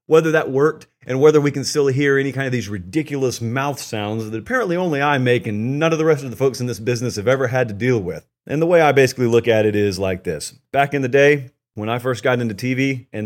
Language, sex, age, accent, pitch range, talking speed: English, male, 30-49, American, 115-140 Hz, 270 wpm